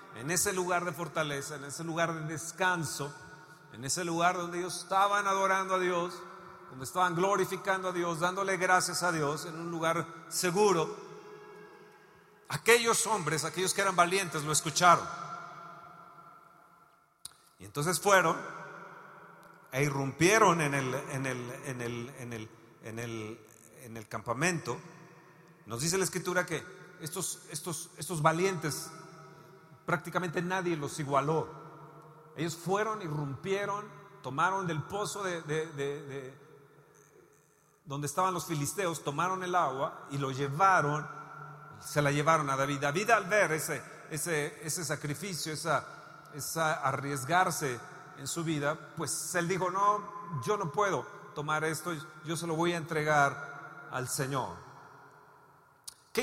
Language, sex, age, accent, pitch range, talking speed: Spanish, male, 40-59, Mexican, 150-185 Hz, 130 wpm